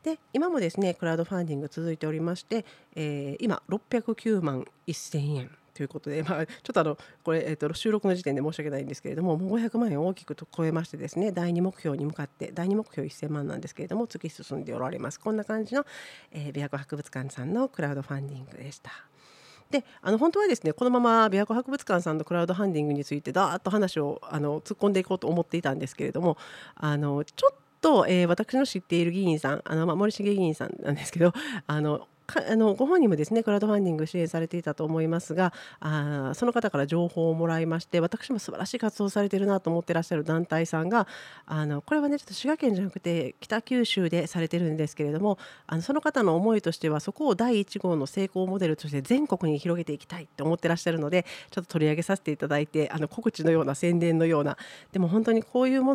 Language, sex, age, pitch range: Japanese, female, 40-59, 150-205 Hz